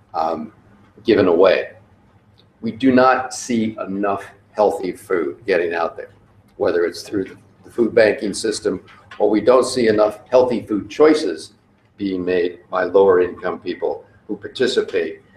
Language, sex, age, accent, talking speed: English, male, 50-69, American, 140 wpm